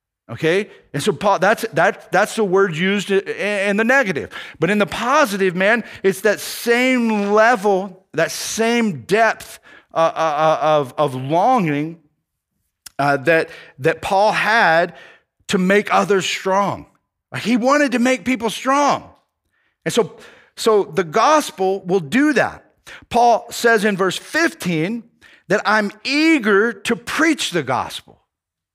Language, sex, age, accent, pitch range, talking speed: English, male, 40-59, American, 195-265 Hz, 140 wpm